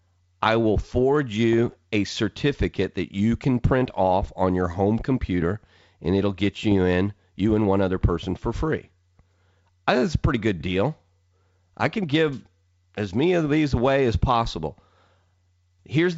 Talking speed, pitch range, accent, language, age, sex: 160 wpm, 95-125 Hz, American, English, 40-59, male